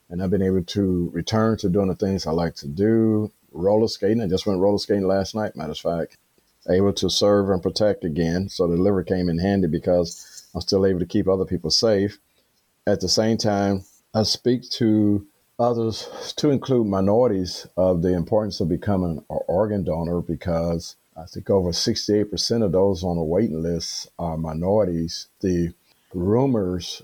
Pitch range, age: 85-100 Hz, 50-69